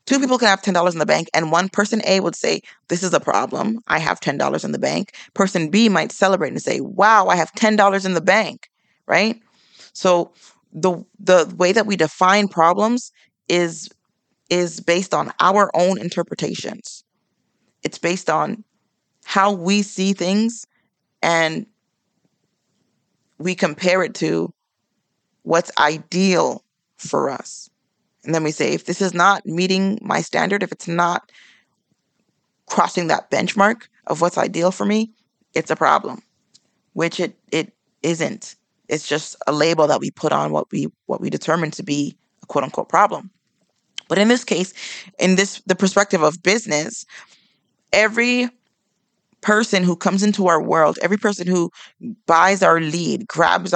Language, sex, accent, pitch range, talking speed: English, female, American, 170-210 Hz, 155 wpm